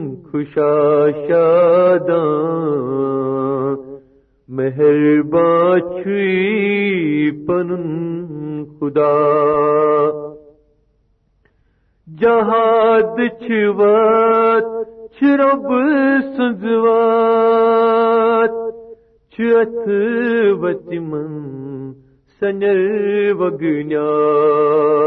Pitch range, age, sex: 150-220 Hz, 50-69, male